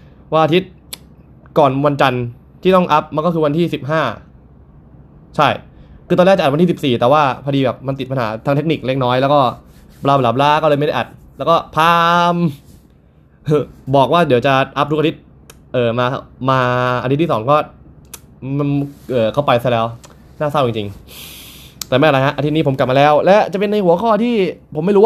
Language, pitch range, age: Thai, 115-155 Hz, 20-39